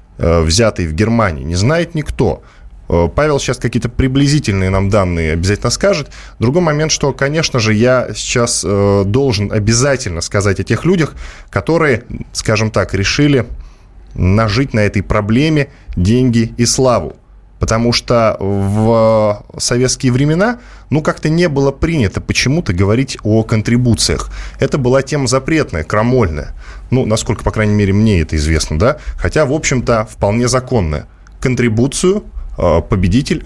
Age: 10-29